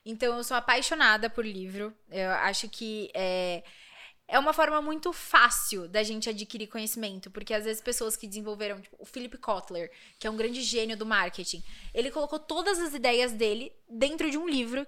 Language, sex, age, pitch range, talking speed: Portuguese, female, 20-39, 215-265 Hz, 185 wpm